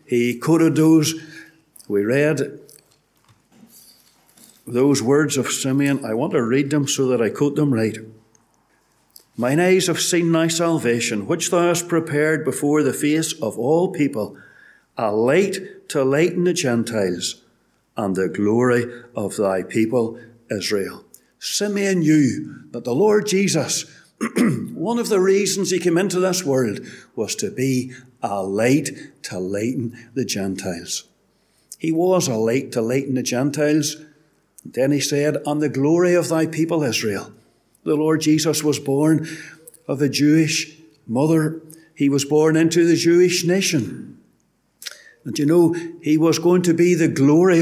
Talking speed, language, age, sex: 145 wpm, English, 60-79, male